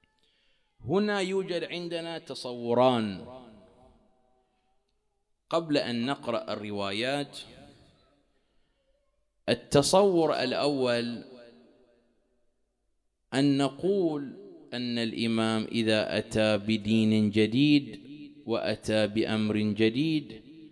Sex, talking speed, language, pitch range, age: male, 60 wpm, English, 105-135 Hz, 30-49